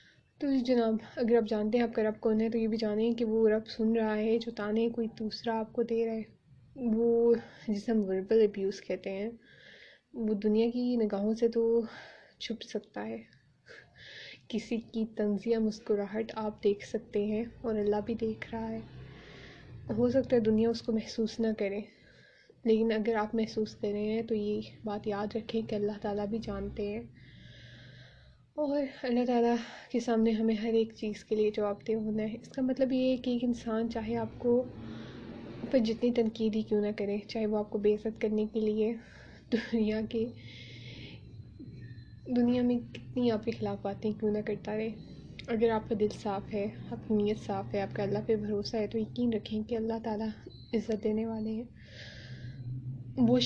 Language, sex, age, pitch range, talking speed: Urdu, female, 20-39, 205-230 Hz, 190 wpm